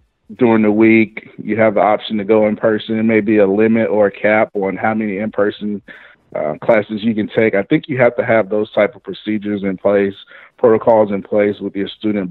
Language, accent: English, American